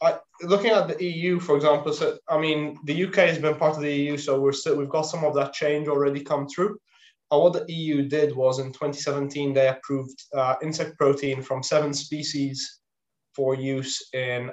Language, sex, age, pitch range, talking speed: English, male, 20-39, 135-155 Hz, 200 wpm